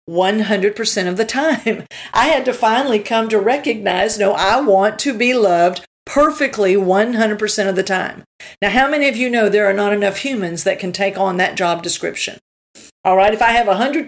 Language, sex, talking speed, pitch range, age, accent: English, female, 195 wpm, 195-235 Hz, 50-69, American